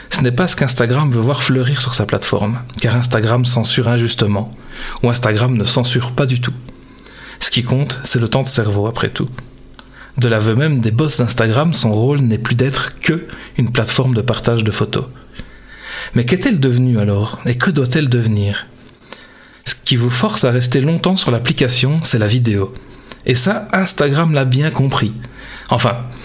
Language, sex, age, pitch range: French, male, 40-59, 115-135 Hz